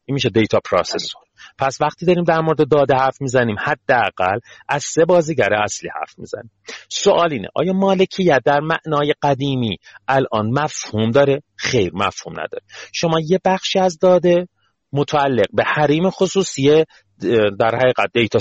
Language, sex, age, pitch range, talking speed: Persian, male, 40-59, 120-165 Hz, 135 wpm